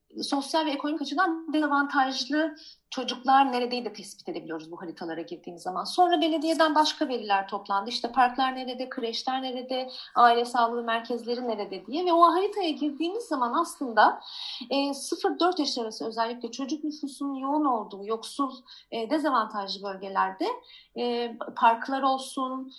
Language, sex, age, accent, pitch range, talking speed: Turkish, female, 40-59, native, 235-295 Hz, 135 wpm